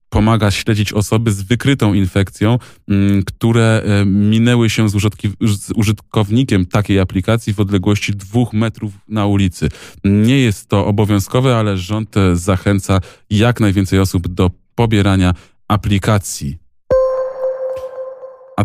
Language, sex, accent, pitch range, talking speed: Polish, male, native, 95-110 Hz, 105 wpm